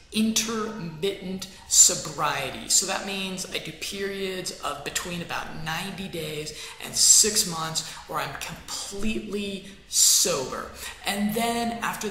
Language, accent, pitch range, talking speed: English, American, 170-215 Hz, 115 wpm